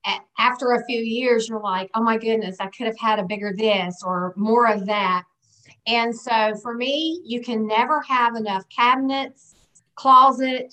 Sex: female